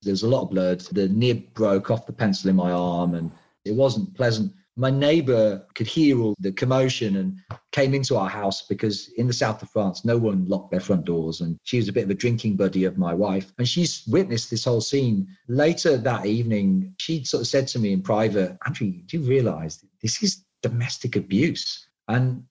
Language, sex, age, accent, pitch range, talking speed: English, male, 40-59, British, 100-135 Hz, 215 wpm